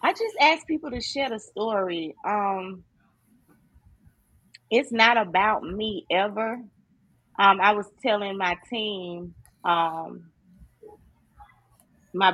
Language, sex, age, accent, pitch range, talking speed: English, female, 30-49, American, 180-215 Hz, 105 wpm